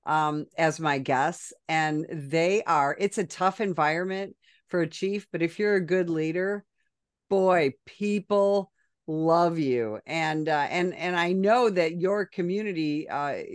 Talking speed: 150 wpm